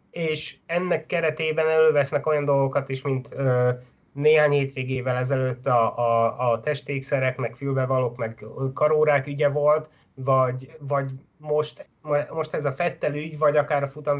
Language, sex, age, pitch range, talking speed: Hungarian, male, 30-49, 130-150 Hz, 150 wpm